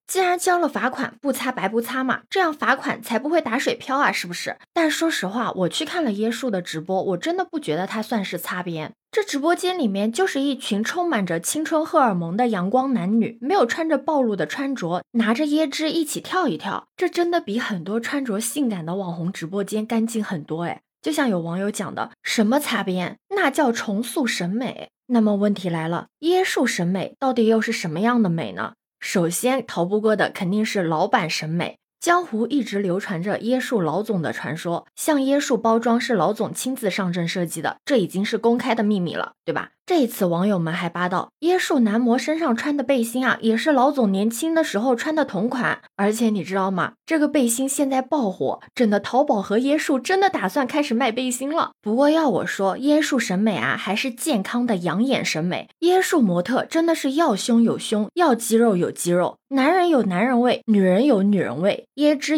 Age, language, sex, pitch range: 20-39, Chinese, female, 195-285 Hz